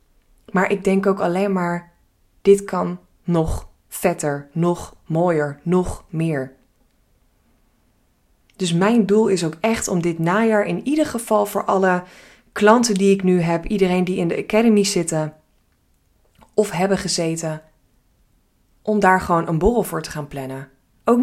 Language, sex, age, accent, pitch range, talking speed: Dutch, female, 20-39, Dutch, 165-200 Hz, 145 wpm